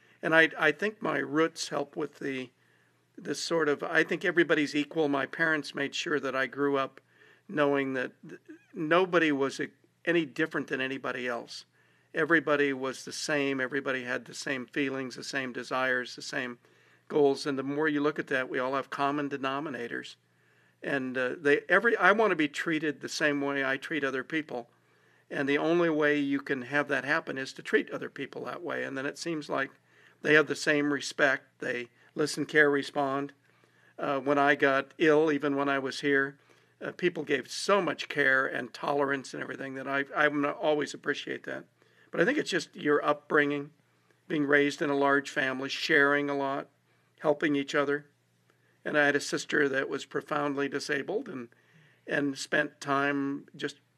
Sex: male